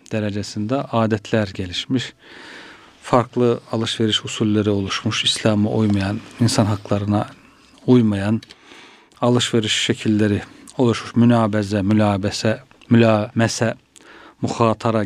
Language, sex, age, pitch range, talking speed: Turkish, male, 40-59, 105-130 Hz, 75 wpm